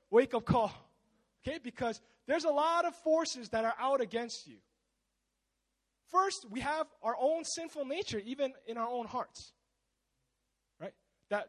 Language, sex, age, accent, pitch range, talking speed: English, male, 20-39, American, 230-315 Hz, 150 wpm